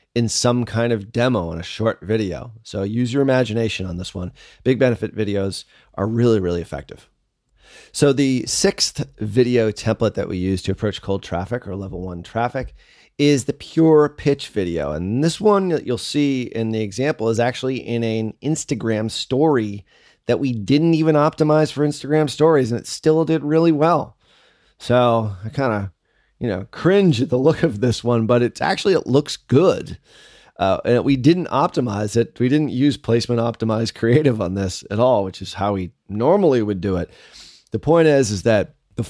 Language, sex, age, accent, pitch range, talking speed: English, male, 30-49, American, 100-130 Hz, 185 wpm